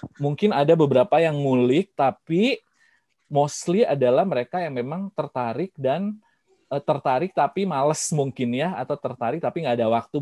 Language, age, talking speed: Indonesian, 20-39, 145 wpm